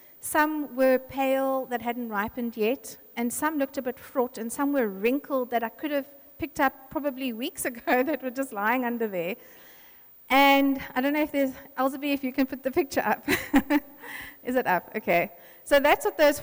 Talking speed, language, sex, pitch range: 195 wpm, English, female, 235-280 Hz